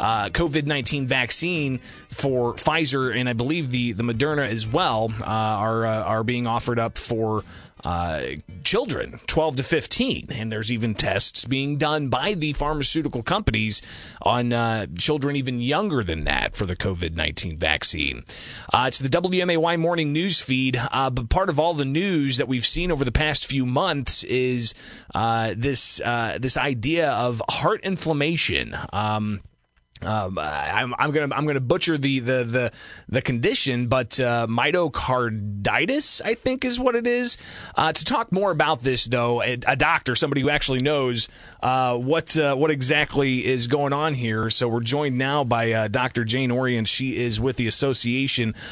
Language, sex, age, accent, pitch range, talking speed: English, male, 30-49, American, 115-150 Hz, 170 wpm